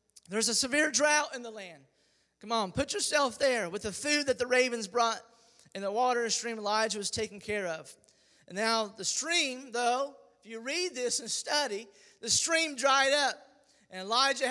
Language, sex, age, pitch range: English, male, 30-49, 225-280 Hz